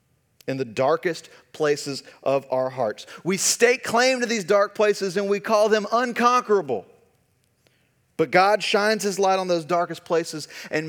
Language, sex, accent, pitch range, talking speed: English, male, American, 145-200 Hz, 160 wpm